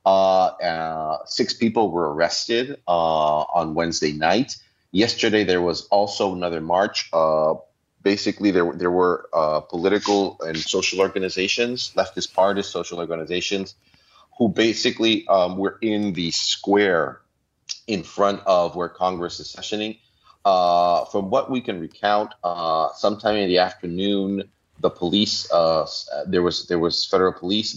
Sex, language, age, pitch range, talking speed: male, English, 30-49, 85-105 Hz, 140 wpm